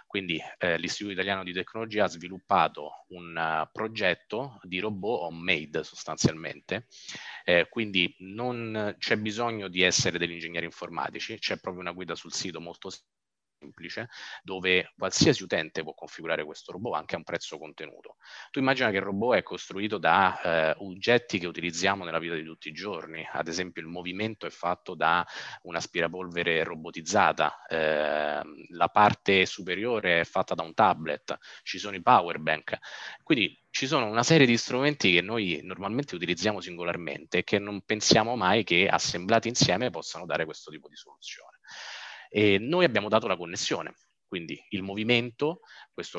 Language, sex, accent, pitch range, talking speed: Italian, male, native, 90-115 Hz, 160 wpm